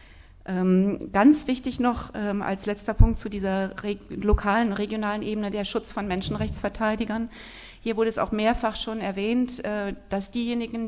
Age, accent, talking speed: 30-49, German, 140 wpm